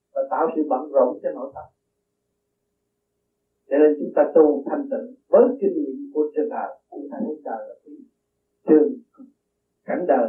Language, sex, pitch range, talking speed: Vietnamese, male, 210-280 Hz, 155 wpm